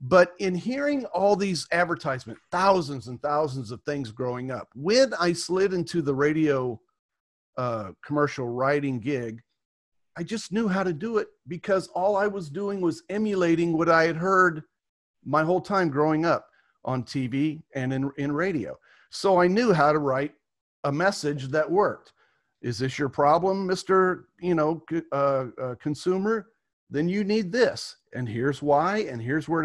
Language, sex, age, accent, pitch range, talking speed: English, male, 40-59, American, 135-180 Hz, 165 wpm